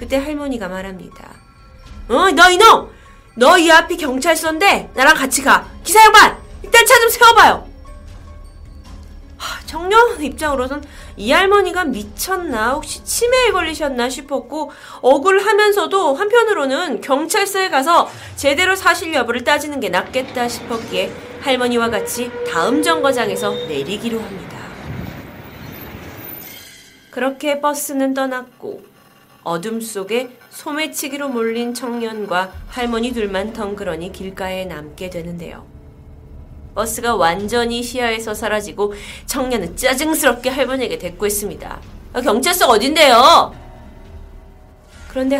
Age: 30-49